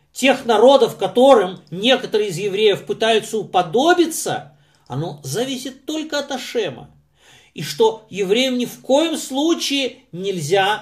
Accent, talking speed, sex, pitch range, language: native, 115 wpm, male, 145-215 Hz, Russian